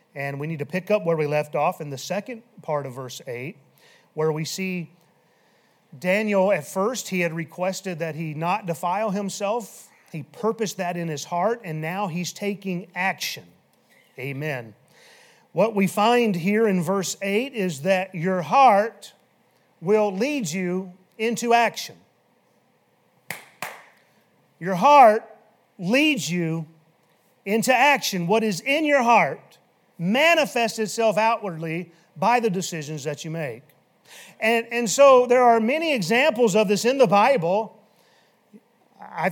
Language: English